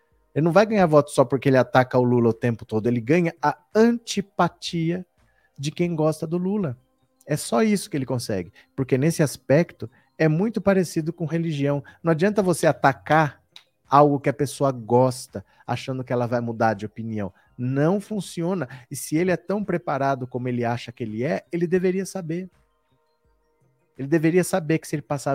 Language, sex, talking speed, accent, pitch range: Portuguese, male, 180 wpm, Brazilian, 130-170 Hz